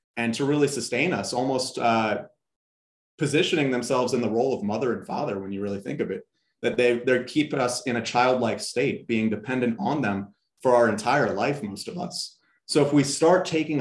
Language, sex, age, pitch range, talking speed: English, male, 30-49, 120-150 Hz, 200 wpm